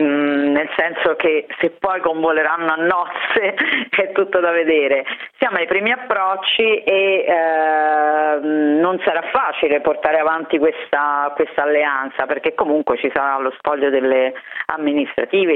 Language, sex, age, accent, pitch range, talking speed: Italian, female, 40-59, native, 145-175 Hz, 125 wpm